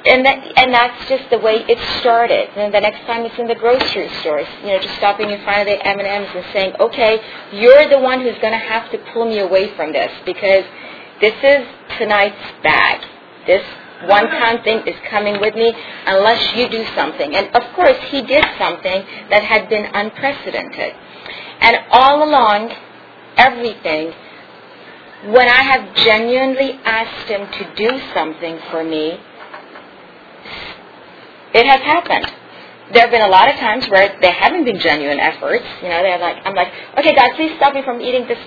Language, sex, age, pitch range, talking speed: English, female, 40-59, 205-270 Hz, 175 wpm